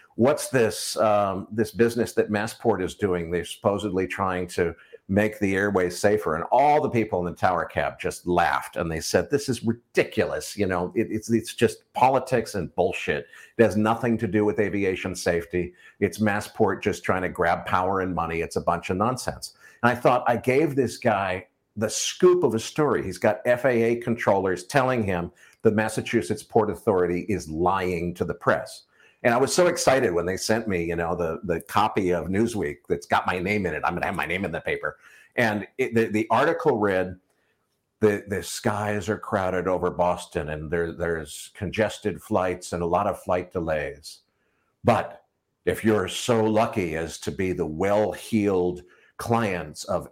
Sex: male